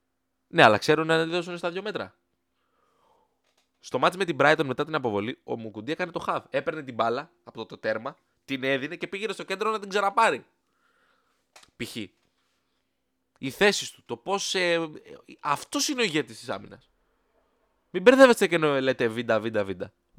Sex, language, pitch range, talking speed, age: male, Greek, 110-180 Hz, 170 wpm, 20-39